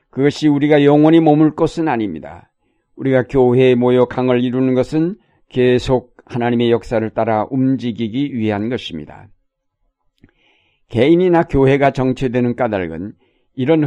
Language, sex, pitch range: Korean, male, 120-140 Hz